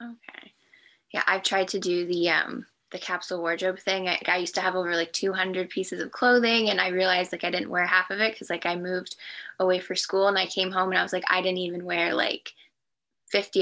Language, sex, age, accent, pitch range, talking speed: English, female, 10-29, American, 180-200 Hz, 240 wpm